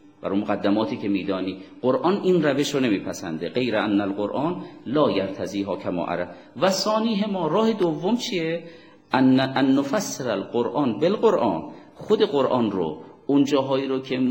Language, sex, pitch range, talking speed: Persian, male, 120-165 Hz, 140 wpm